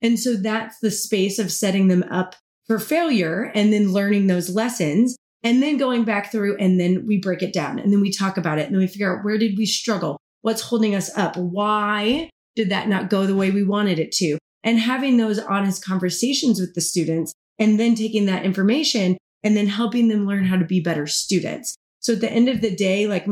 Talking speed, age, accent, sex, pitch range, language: 225 wpm, 30-49, American, female, 180-215 Hz, English